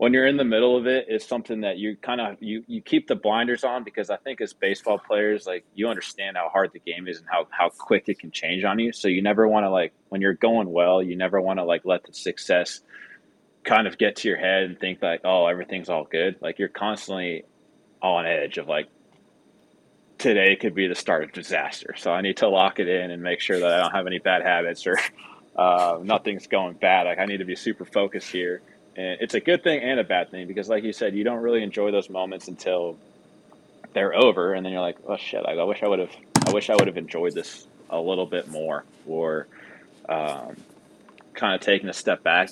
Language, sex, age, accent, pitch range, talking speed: English, male, 20-39, American, 95-115 Hz, 240 wpm